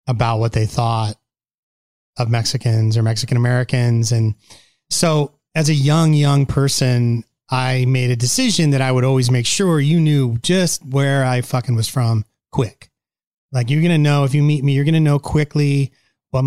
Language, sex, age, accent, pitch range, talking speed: English, male, 30-49, American, 125-150 Hz, 180 wpm